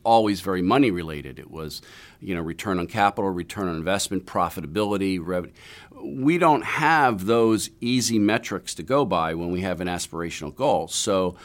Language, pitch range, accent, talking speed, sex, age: English, 85-110 Hz, American, 170 wpm, male, 50-69